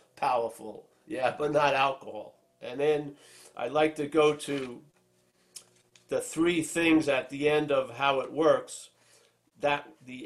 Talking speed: 140 wpm